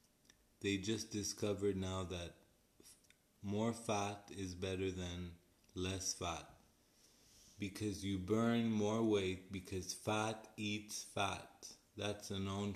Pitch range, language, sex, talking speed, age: 95-105 Hz, English, male, 115 wpm, 20-39